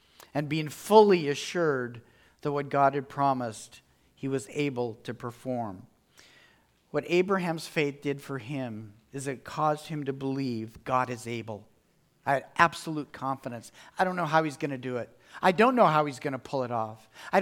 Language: English